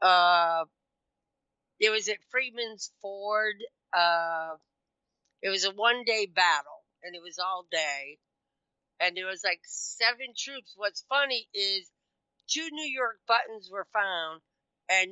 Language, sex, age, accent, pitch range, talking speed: English, female, 50-69, American, 170-220 Hz, 130 wpm